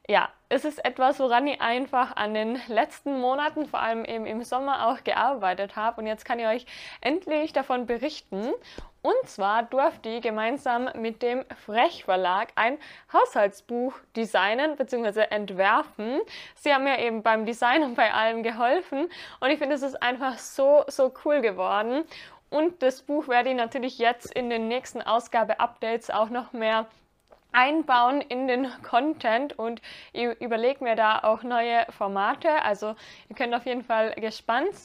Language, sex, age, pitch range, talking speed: German, female, 20-39, 230-290 Hz, 160 wpm